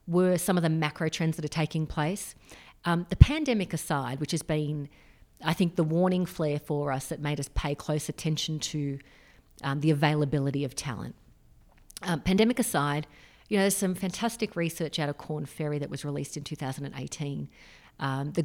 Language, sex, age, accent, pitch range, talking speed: English, female, 40-59, Australian, 150-185 Hz, 190 wpm